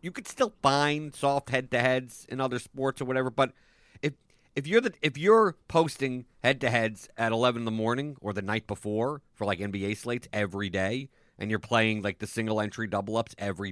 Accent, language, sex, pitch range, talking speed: American, English, male, 115-160 Hz, 190 wpm